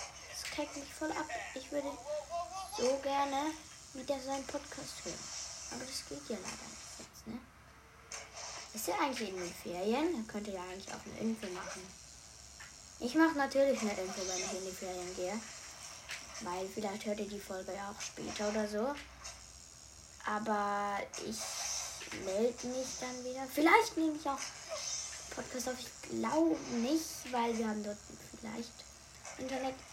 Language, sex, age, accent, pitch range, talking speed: German, female, 10-29, German, 190-265 Hz, 155 wpm